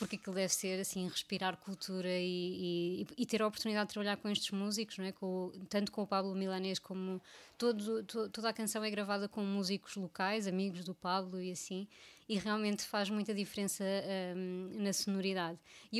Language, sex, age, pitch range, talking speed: Portuguese, female, 20-39, 190-215 Hz, 190 wpm